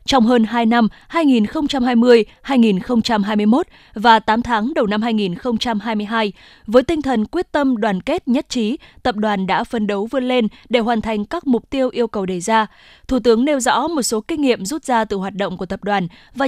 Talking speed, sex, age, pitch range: 195 wpm, female, 20-39, 205-265 Hz